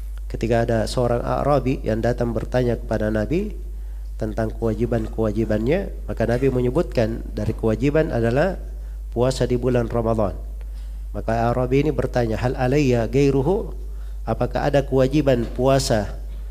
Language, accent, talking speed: Indonesian, native, 110 wpm